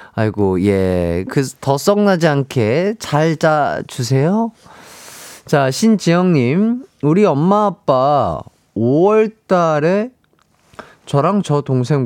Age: 30-49